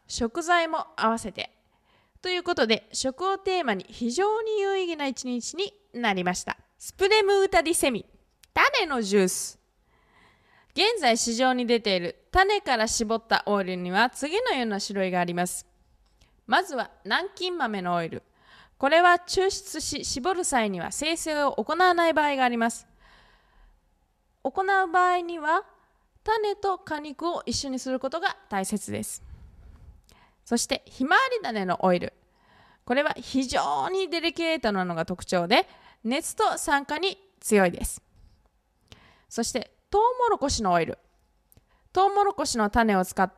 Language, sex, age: Japanese, female, 20-39